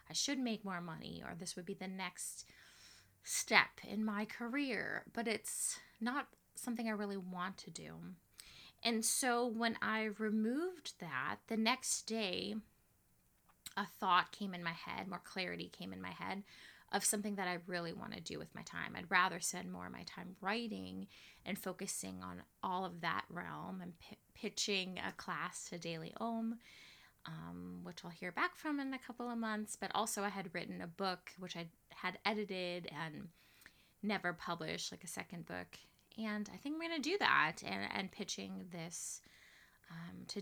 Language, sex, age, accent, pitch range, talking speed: English, female, 20-39, American, 180-230 Hz, 180 wpm